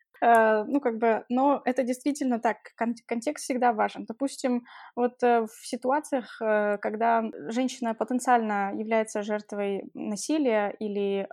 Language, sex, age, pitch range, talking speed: English, female, 20-39, 215-245 Hz, 130 wpm